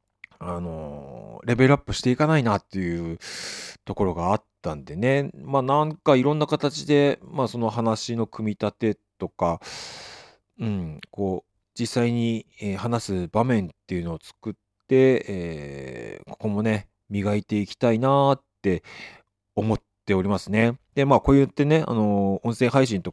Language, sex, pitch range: Japanese, male, 95-125 Hz